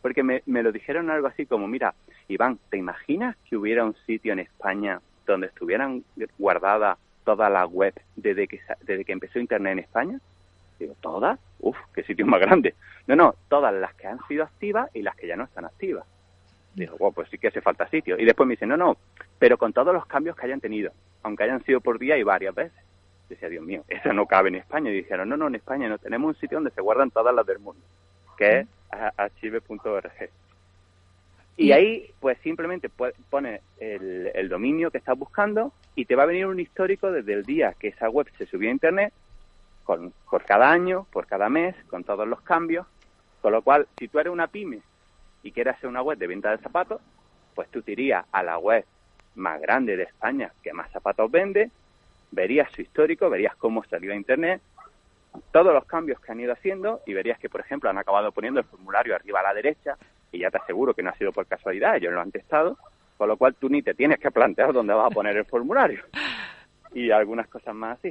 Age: 30-49